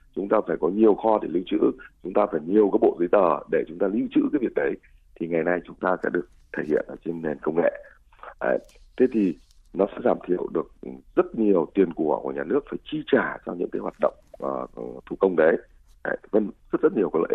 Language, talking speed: Vietnamese, 250 wpm